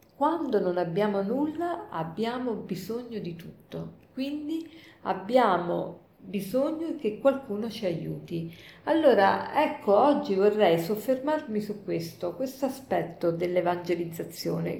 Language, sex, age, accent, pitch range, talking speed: Italian, female, 50-69, native, 185-265 Hz, 100 wpm